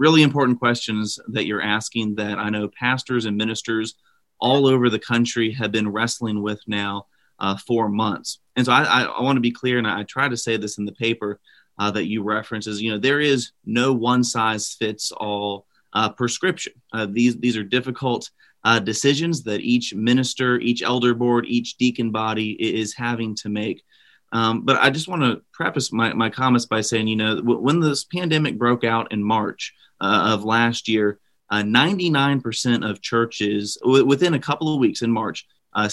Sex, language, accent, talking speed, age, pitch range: male, English, American, 180 wpm, 30-49, 110-130 Hz